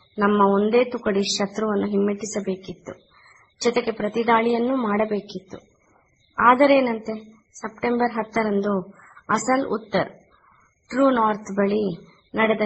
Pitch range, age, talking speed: 195-230 Hz, 20-39, 80 wpm